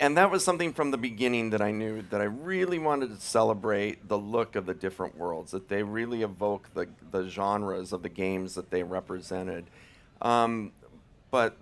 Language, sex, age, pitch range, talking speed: English, male, 40-59, 95-120 Hz, 190 wpm